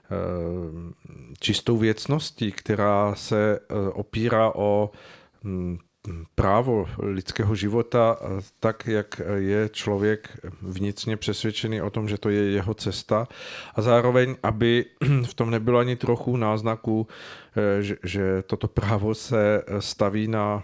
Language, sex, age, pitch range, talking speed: Czech, male, 40-59, 100-115 Hz, 110 wpm